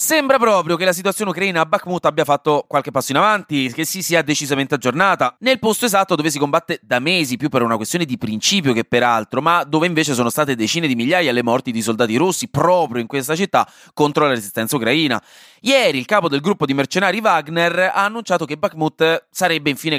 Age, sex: 30-49, male